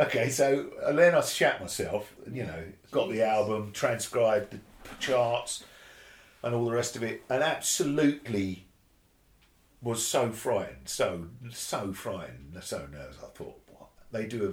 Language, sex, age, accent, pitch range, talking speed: English, male, 50-69, British, 85-125 Hz, 150 wpm